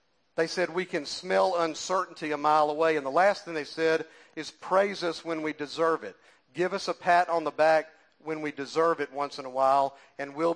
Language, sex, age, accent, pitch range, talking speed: English, male, 50-69, American, 165-225 Hz, 220 wpm